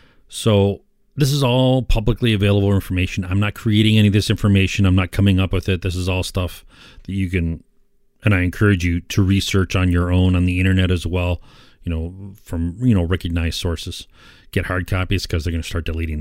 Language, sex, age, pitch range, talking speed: English, male, 40-59, 85-100 Hz, 210 wpm